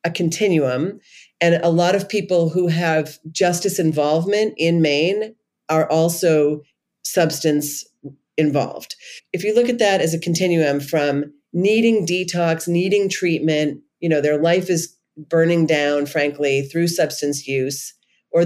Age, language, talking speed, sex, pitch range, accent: 40-59, English, 135 wpm, female, 145-180 Hz, American